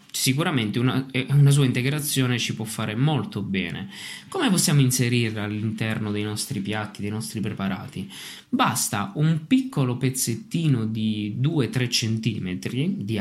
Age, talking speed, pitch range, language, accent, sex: 20-39, 125 wpm, 110-140 Hz, Italian, native, male